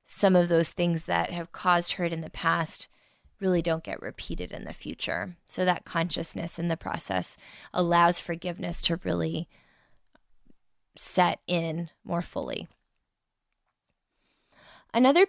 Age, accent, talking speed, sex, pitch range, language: 20-39, American, 130 wpm, female, 165-195 Hz, English